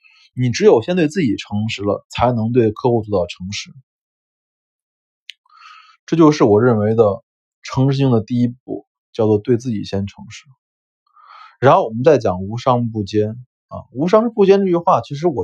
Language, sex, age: Chinese, male, 20-39